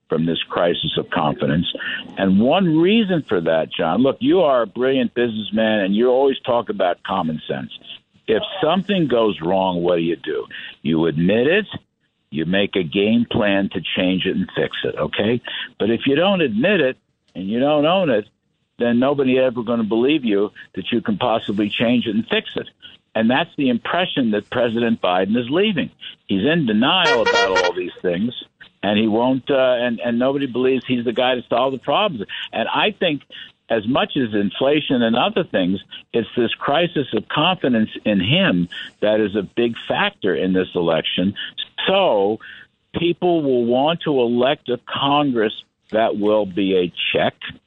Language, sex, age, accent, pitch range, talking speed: English, male, 60-79, American, 105-140 Hz, 180 wpm